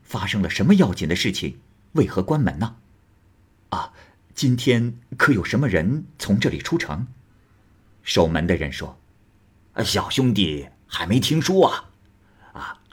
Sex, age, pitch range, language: male, 50-69, 95-125 Hz, Chinese